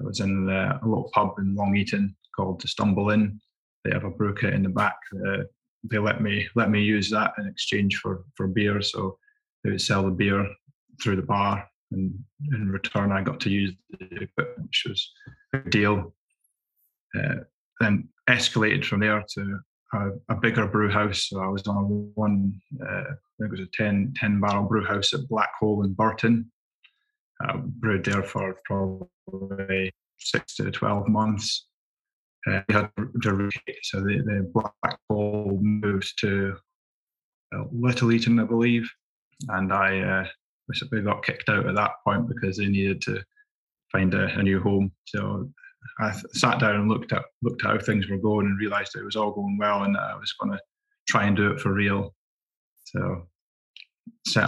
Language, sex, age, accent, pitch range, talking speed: English, male, 20-39, British, 100-110 Hz, 180 wpm